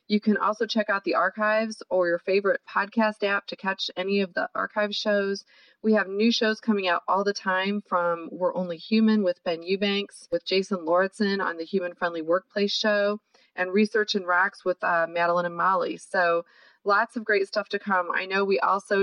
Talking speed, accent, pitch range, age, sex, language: 200 wpm, American, 180-220 Hz, 30-49, female, English